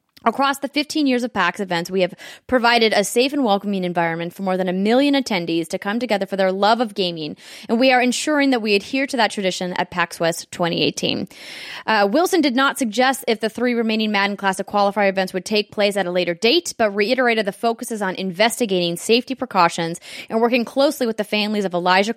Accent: American